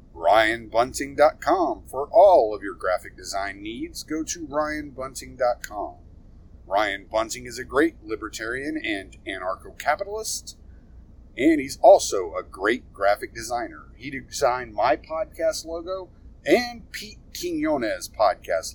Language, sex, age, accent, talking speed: English, male, 40-59, American, 110 wpm